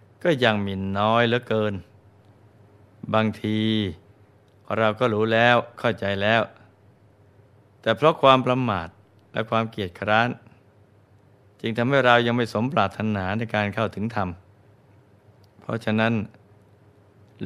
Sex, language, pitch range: male, Thai, 100-115 Hz